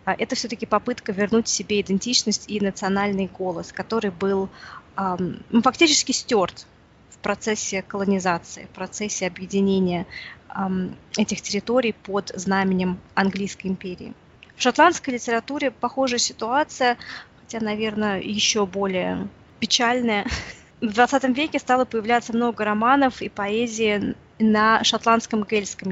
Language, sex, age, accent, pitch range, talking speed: Russian, female, 20-39, native, 195-230 Hz, 115 wpm